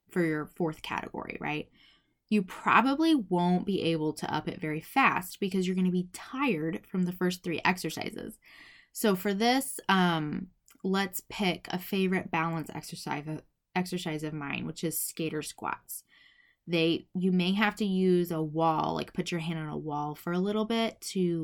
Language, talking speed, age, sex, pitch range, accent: English, 175 wpm, 20-39, female, 165-210 Hz, American